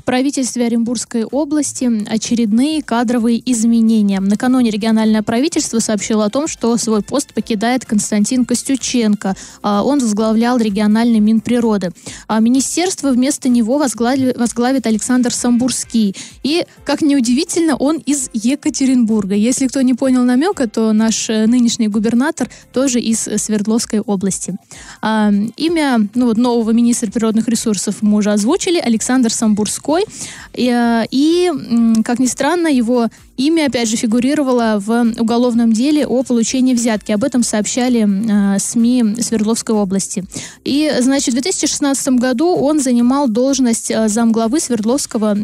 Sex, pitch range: female, 225-265 Hz